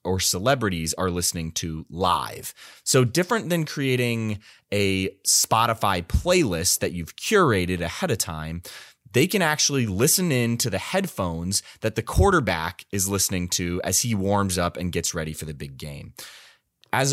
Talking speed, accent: 160 wpm, American